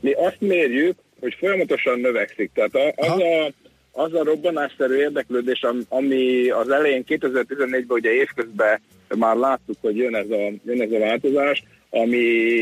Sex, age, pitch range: male, 60-79, 120-185 Hz